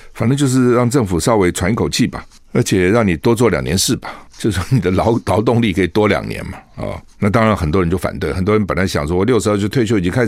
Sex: male